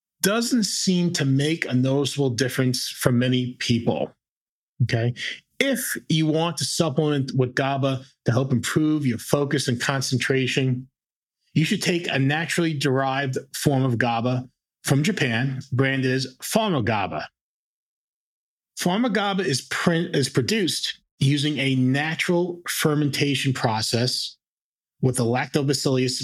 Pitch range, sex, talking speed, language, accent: 125-155 Hz, male, 120 wpm, English, American